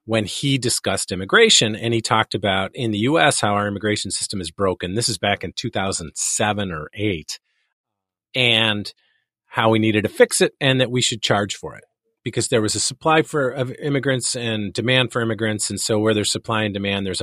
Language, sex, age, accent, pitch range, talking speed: English, male, 40-59, American, 100-130 Hz, 200 wpm